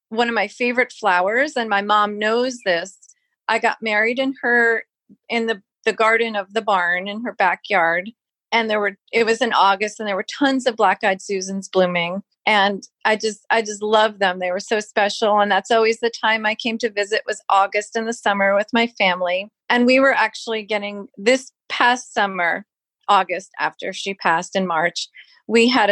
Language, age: English, 30-49